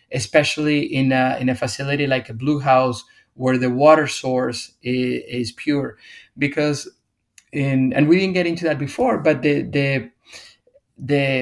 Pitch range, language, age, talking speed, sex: 125-150 Hz, English, 30-49, 160 wpm, male